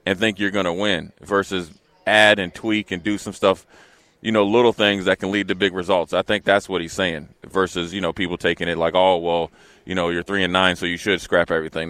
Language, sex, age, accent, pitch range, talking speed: English, male, 30-49, American, 90-100 Hz, 250 wpm